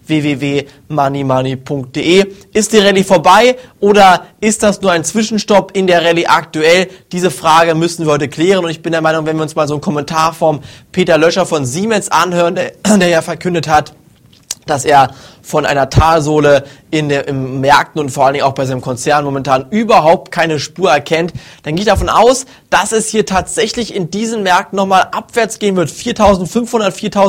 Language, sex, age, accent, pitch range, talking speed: German, male, 20-39, German, 160-205 Hz, 185 wpm